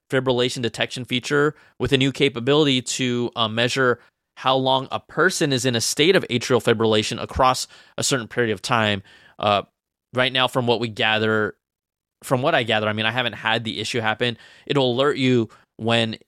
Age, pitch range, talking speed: 20-39, 110-135 Hz, 185 wpm